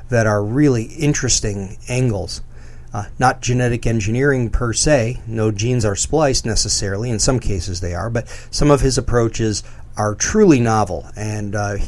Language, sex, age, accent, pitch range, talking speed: English, male, 40-59, American, 100-125 Hz, 155 wpm